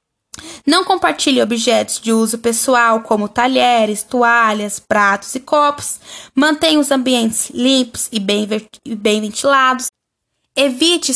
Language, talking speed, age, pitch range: Portuguese, 115 wpm, 10-29, 225-290 Hz